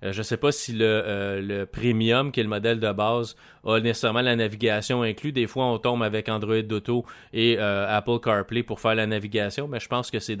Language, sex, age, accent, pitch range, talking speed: French, male, 30-49, Canadian, 105-130 Hz, 230 wpm